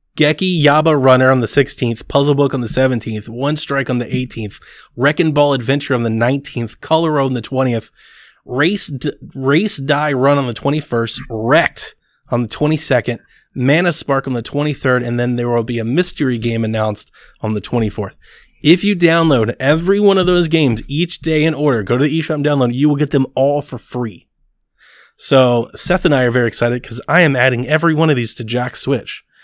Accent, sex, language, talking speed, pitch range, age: American, male, English, 205 wpm, 120-150 Hz, 20-39